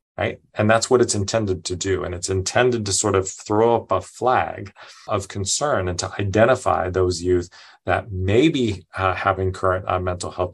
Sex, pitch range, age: male, 90-105 Hz, 30-49